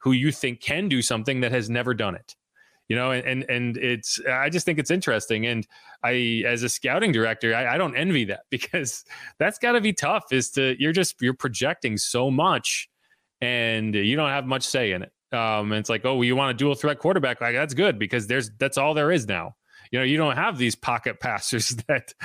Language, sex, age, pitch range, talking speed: English, male, 30-49, 115-145 Hz, 235 wpm